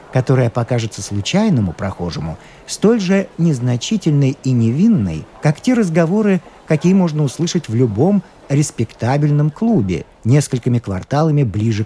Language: Russian